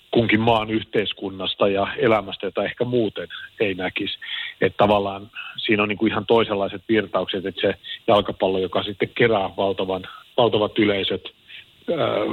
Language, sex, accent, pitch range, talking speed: Finnish, male, native, 95-110 Hz, 140 wpm